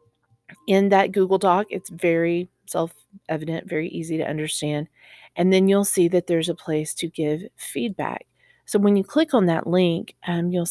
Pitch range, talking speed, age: 165-205 Hz, 175 wpm, 40-59